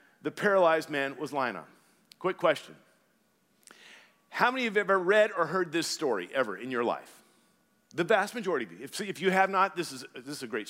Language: English